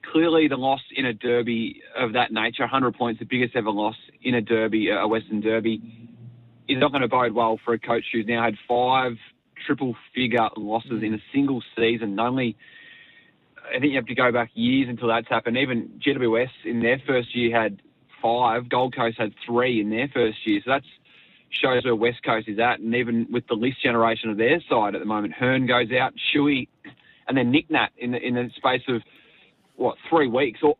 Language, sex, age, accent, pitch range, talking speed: English, male, 20-39, Australian, 115-140 Hz, 205 wpm